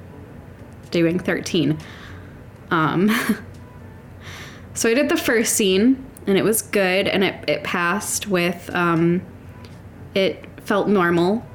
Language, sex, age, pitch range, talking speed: English, female, 10-29, 160-220 Hz, 115 wpm